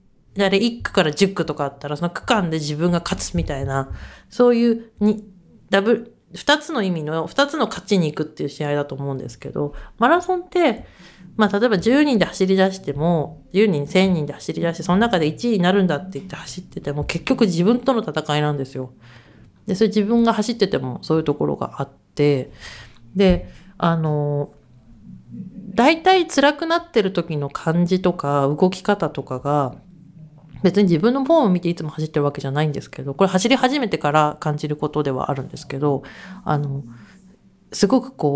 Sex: female